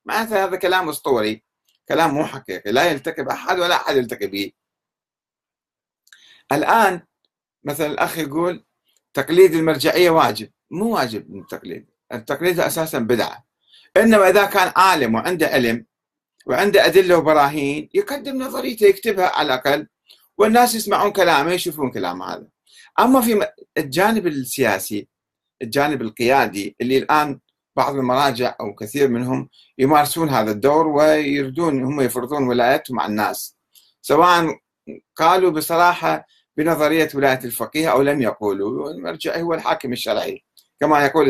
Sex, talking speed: male, 120 wpm